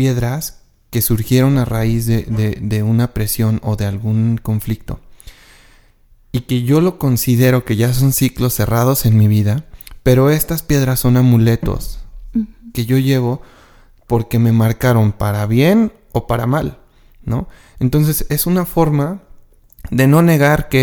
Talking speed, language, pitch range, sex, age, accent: 150 wpm, Spanish, 110-135 Hz, male, 30-49, Mexican